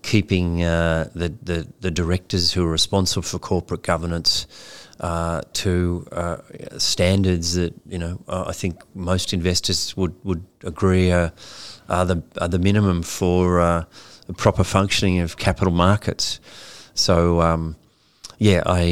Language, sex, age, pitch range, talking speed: English, male, 30-49, 85-95 Hz, 145 wpm